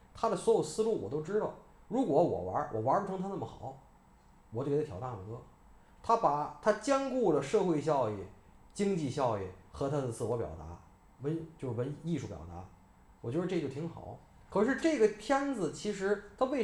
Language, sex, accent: Chinese, male, native